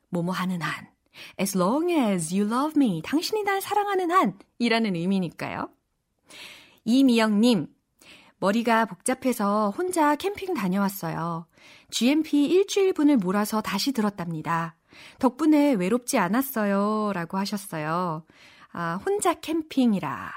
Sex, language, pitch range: female, Korean, 180-270 Hz